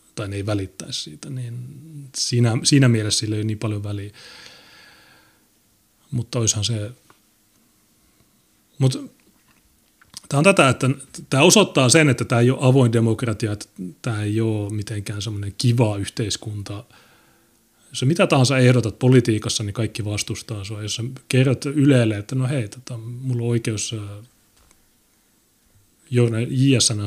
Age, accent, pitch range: 30-49, native, 110-130 Hz